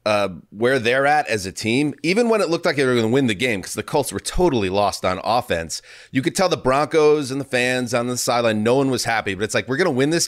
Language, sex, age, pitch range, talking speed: English, male, 30-49, 110-145 Hz, 290 wpm